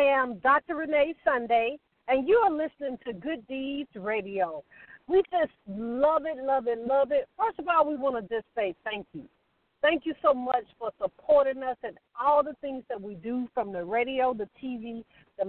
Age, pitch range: 50-69, 230-300 Hz